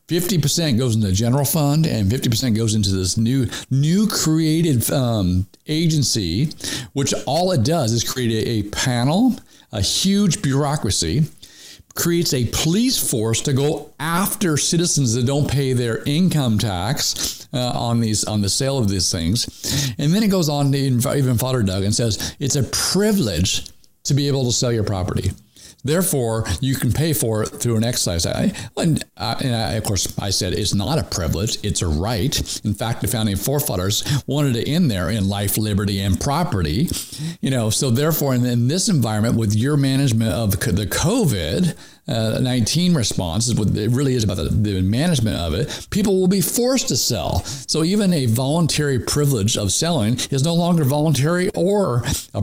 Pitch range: 105-150 Hz